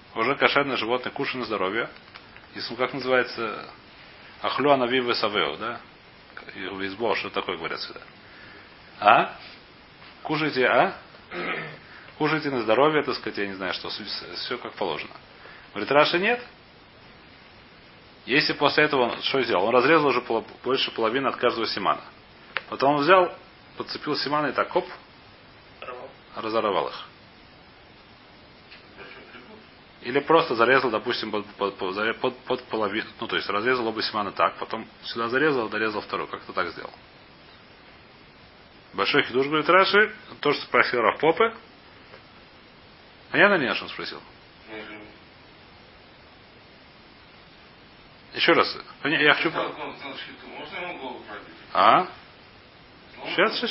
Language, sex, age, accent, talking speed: Russian, male, 30-49, native, 120 wpm